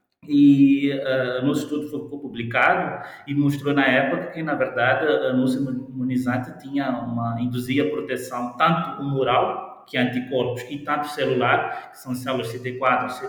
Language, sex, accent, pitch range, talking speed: Portuguese, male, Brazilian, 120-145 Hz, 140 wpm